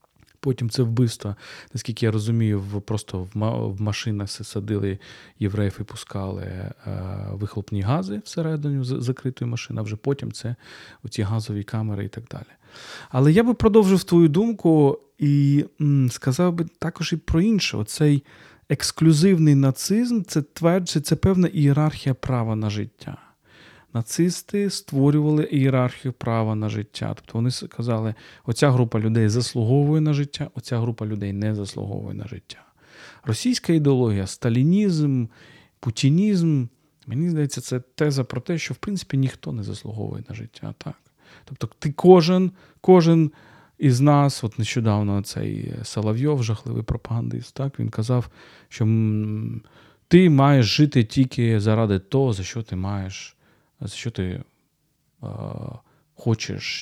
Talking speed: 130 wpm